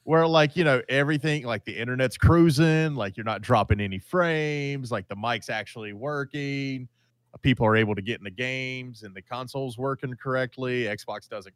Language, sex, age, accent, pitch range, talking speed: English, male, 30-49, American, 110-130 Hz, 185 wpm